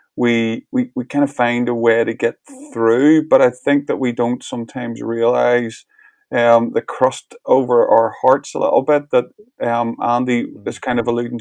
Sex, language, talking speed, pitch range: male, English, 185 wpm, 115-130 Hz